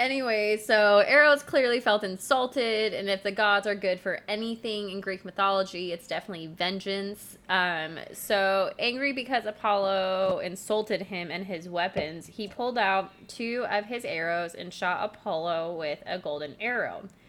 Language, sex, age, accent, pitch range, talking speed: English, female, 20-39, American, 180-215 Hz, 155 wpm